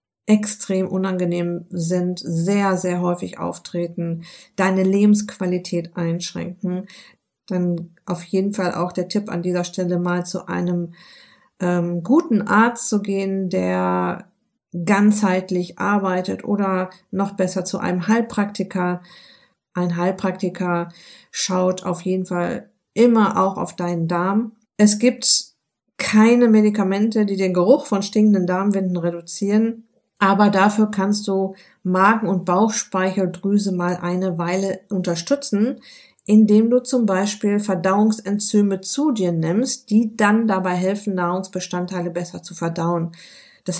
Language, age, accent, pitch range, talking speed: German, 50-69, German, 180-210 Hz, 120 wpm